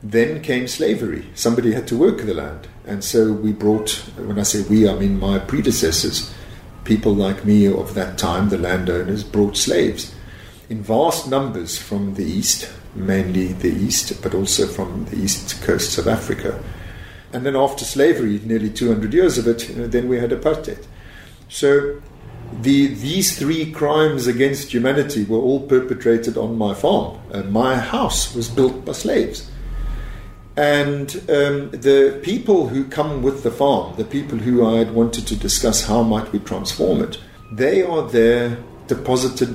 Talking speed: 160 wpm